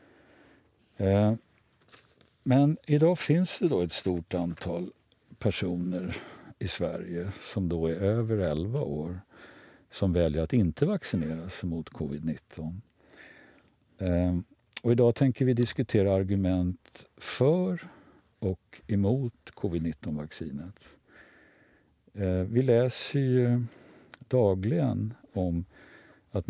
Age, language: 50-69, Swedish